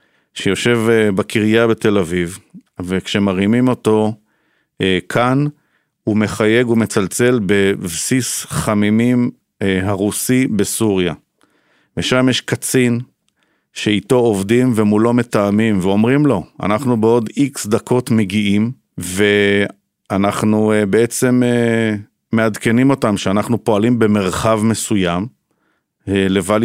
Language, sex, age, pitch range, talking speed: Hebrew, male, 50-69, 100-120 Hz, 85 wpm